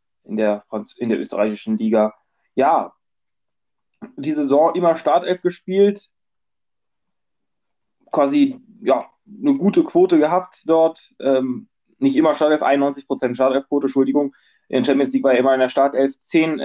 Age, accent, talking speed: 20-39, German, 130 wpm